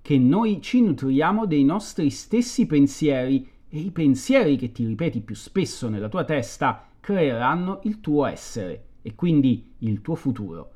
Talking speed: 155 wpm